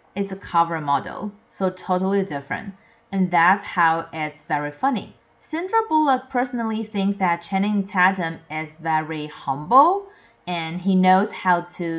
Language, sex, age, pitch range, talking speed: English, female, 30-49, 170-215 Hz, 140 wpm